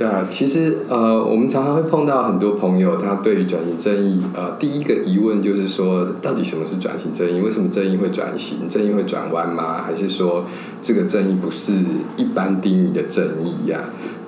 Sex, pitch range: male, 90-110 Hz